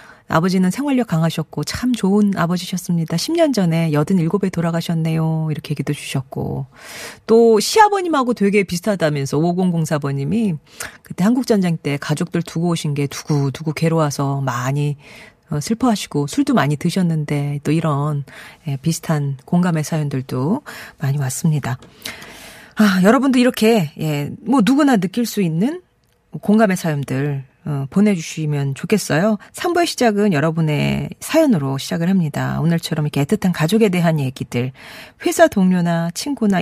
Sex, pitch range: female, 150-215 Hz